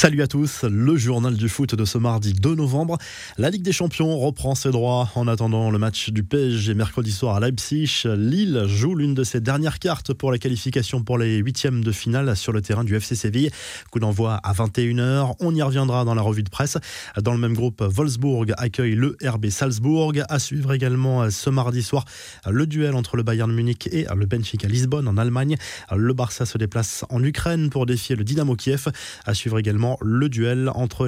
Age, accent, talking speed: 20-39, French, 205 wpm